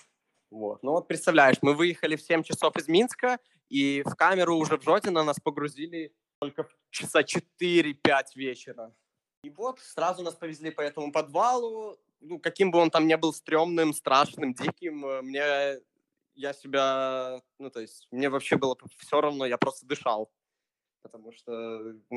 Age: 20-39